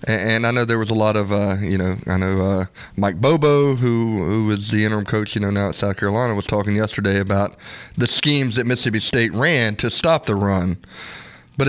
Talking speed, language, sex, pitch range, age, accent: 220 wpm, English, male, 110-135 Hz, 20-39, American